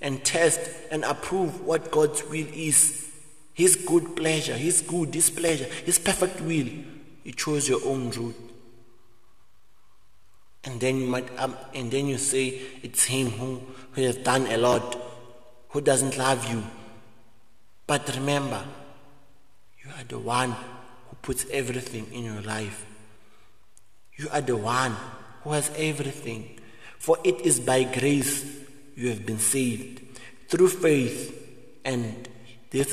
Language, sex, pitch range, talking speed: English, male, 120-145 Hz, 135 wpm